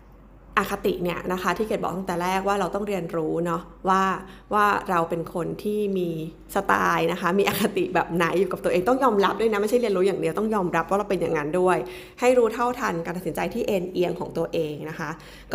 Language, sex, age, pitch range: Thai, female, 20-39, 170-205 Hz